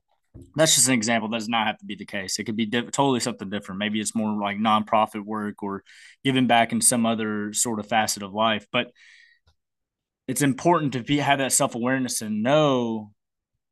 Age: 20-39